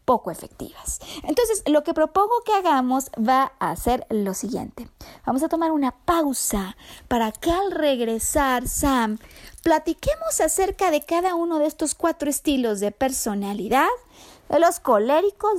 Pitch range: 230-320 Hz